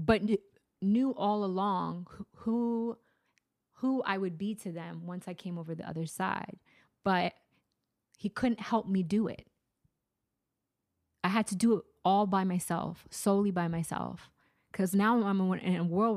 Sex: female